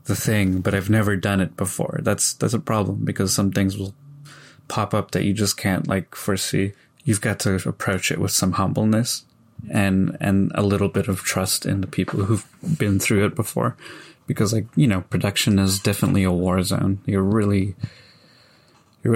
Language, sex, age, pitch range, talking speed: English, male, 20-39, 95-110 Hz, 190 wpm